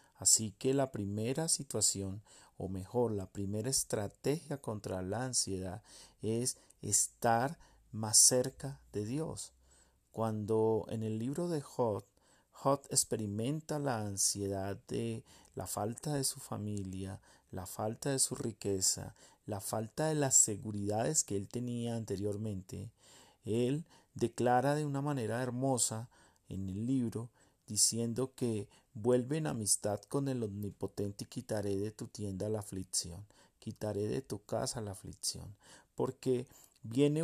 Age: 40-59